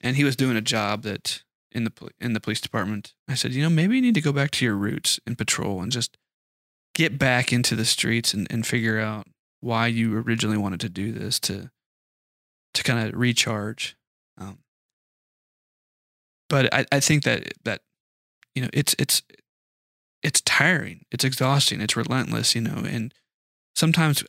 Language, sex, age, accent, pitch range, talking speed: English, male, 20-39, American, 110-130 Hz, 175 wpm